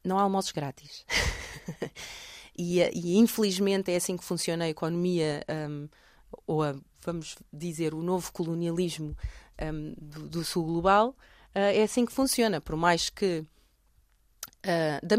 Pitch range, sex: 165-220 Hz, female